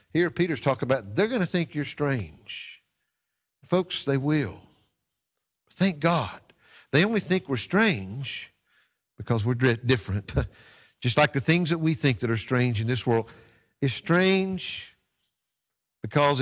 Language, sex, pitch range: English, male, 120-170 Hz